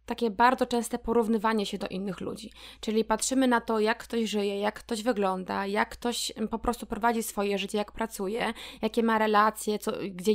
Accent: native